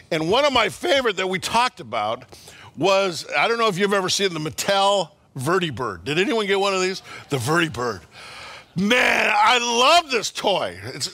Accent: American